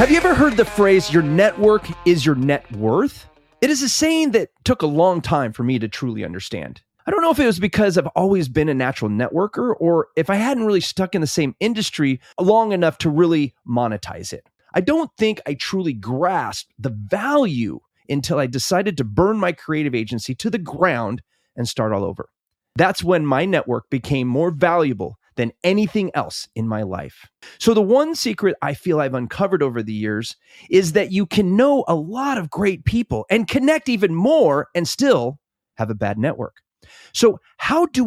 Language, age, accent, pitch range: English, 30-49, American, 130-215 Hz